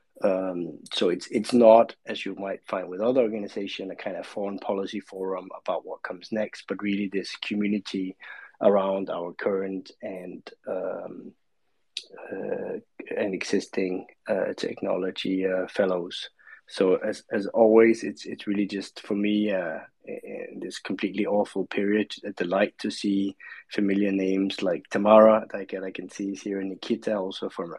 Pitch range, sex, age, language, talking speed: 95-110 Hz, male, 20-39, English, 155 wpm